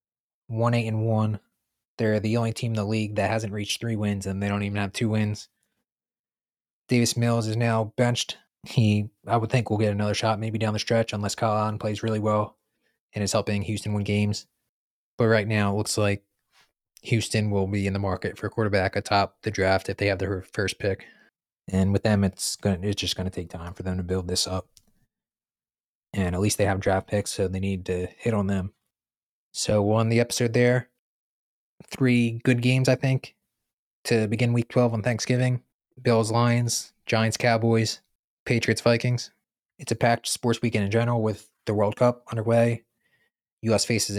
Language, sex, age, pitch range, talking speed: English, male, 20-39, 100-115 Hz, 190 wpm